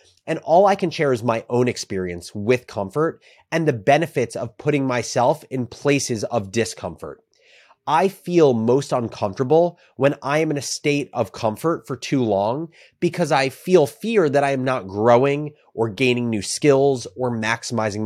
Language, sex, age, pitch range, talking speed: English, male, 30-49, 115-145 Hz, 170 wpm